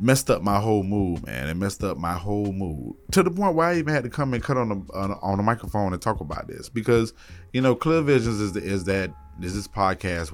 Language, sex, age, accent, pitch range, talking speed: English, male, 20-39, American, 85-105 Hz, 275 wpm